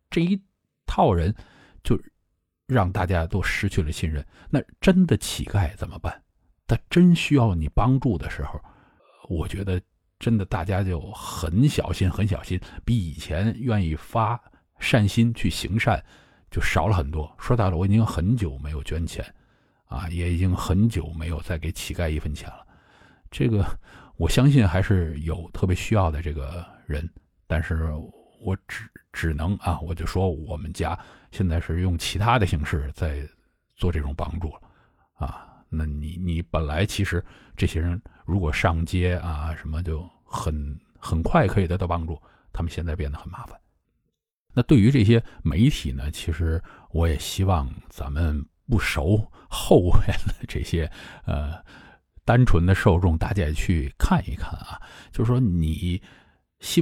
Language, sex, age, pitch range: Chinese, male, 50-69, 80-100 Hz